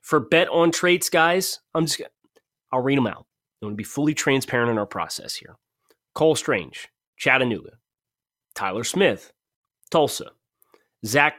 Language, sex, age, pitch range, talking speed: English, male, 30-49, 120-160 Hz, 140 wpm